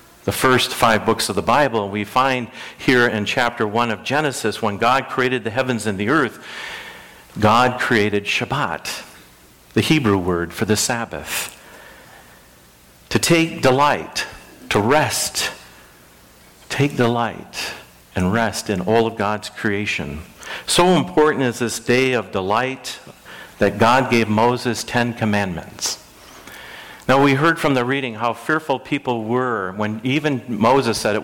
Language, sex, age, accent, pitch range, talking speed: English, male, 50-69, American, 105-130 Hz, 140 wpm